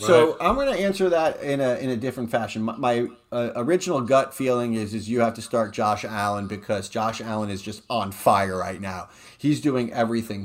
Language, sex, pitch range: English, male, 110-140 Hz